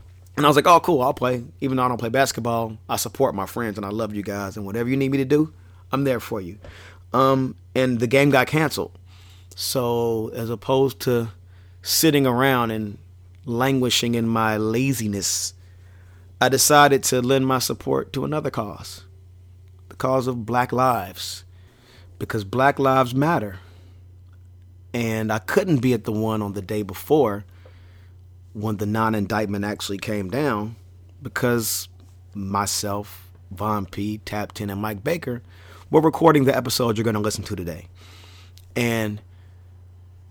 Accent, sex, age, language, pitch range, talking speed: American, male, 30-49, English, 90-125 Hz, 155 wpm